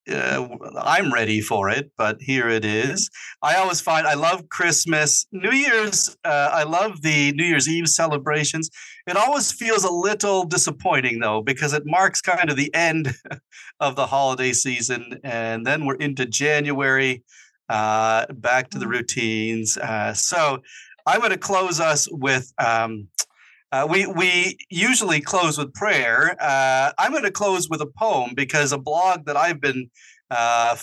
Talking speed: 160 wpm